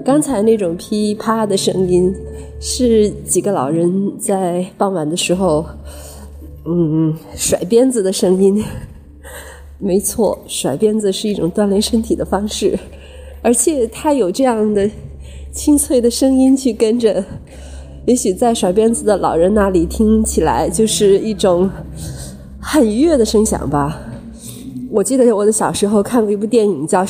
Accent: native